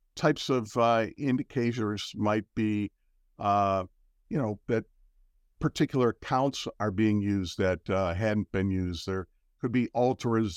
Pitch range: 100-125 Hz